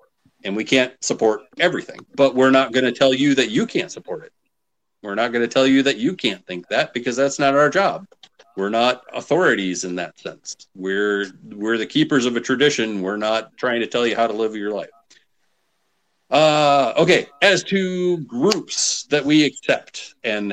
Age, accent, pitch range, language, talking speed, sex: 40-59, American, 100-125 Hz, English, 195 wpm, male